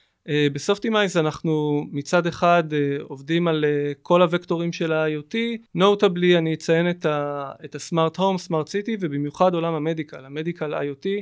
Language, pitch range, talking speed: Hebrew, 150-195 Hz, 140 wpm